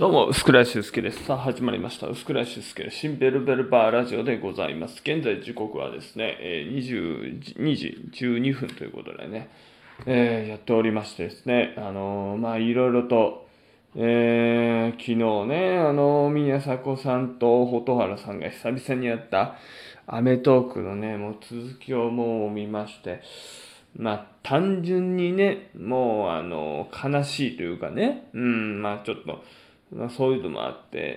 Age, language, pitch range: 20-39, Japanese, 115-135 Hz